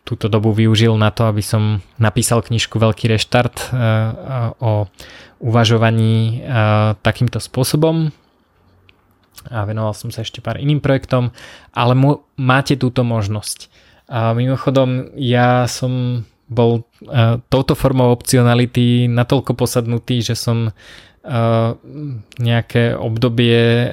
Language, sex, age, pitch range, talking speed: Slovak, male, 20-39, 110-120 Hz, 105 wpm